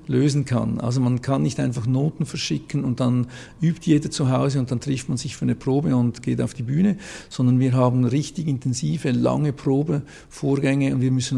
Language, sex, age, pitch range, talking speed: German, male, 50-69, 120-140 Hz, 200 wpm